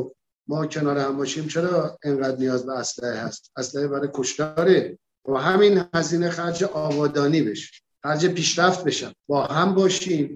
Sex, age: male, 50-69